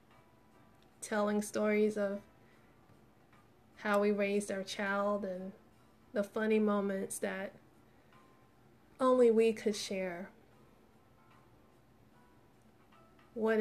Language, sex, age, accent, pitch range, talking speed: English, female, 20-39, American, 180-220 Hz, 80 wpm